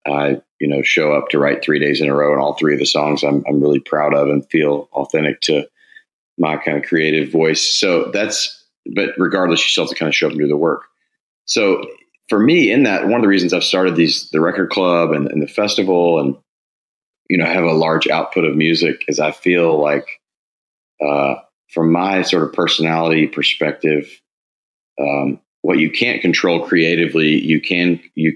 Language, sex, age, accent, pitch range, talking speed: English, male, 30-49, American, 75-85 Hz, 205 wpm